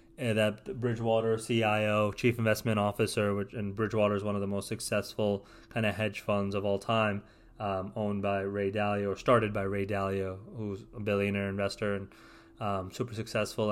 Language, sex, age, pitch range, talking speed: English, male, 20-39, 100-115 Hz, 175 wpm